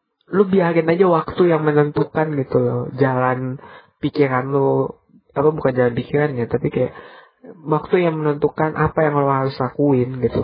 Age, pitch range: 20-39, 135-170 Hz